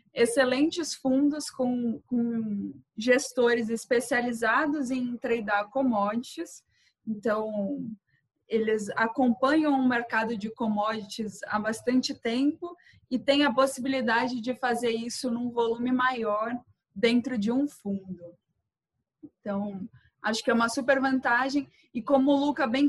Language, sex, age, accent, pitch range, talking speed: Portuguese, female, 20-39, Brazilian, 220-265 Hz, 120 wpm